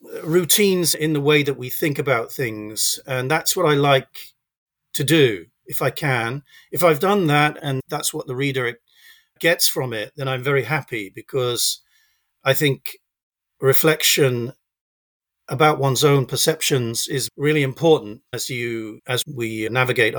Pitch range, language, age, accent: 130-160 Hz, English, 40-59, British